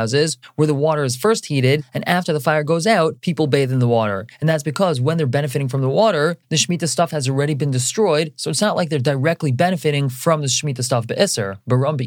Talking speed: 230 wpm